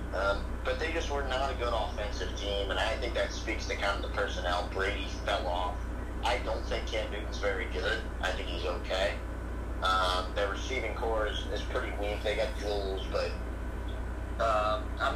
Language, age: English, 30-49